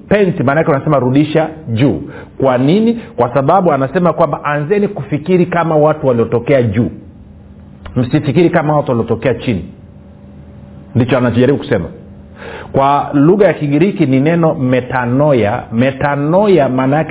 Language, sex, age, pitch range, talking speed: Swahili, male, 50-69, 120-160 Hz, 120 wpm